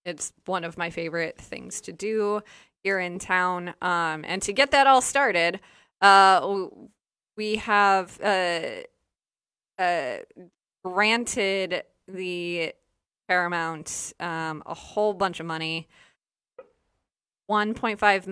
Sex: female